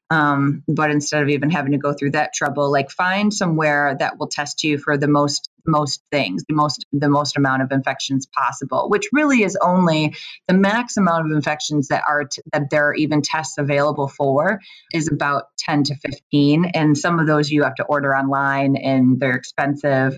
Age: 30-49